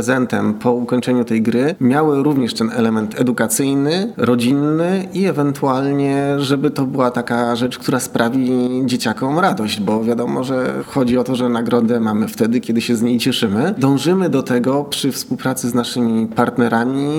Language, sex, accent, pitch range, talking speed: Polish, male, native, 120-140 Hz, 155 wpm